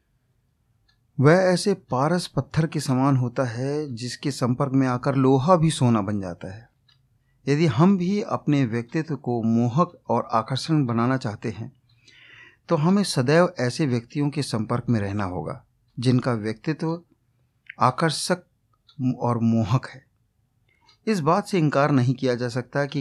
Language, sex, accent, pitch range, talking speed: Hindi, male, native, 120-160 Hz, 145 wpm